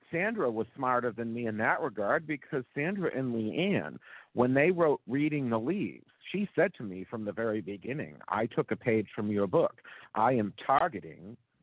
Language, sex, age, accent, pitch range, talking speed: English, male, 50-69, American, 115-150 Hz, 185 wpm